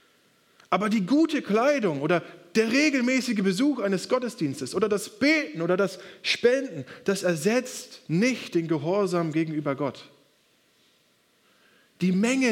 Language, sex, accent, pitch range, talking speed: German, male, German, 175-245 Hz, 120 wpm